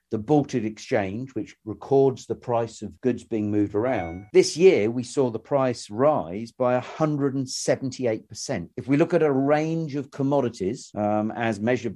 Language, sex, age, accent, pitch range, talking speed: English, male, 50-69, British, 100-125 Hz, 160 wpm